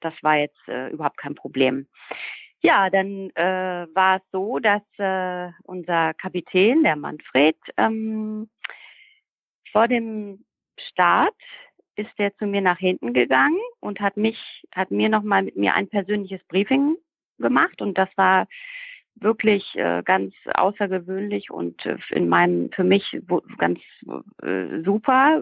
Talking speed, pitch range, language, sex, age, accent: 125 wpm, 170-210 Hz, German, female, 40-59, German